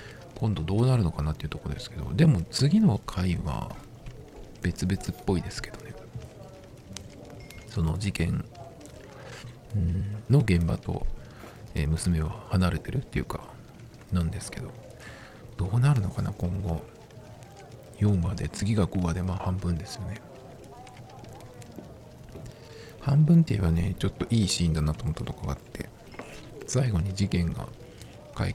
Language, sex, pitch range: Japanese, male, 90-120 Hz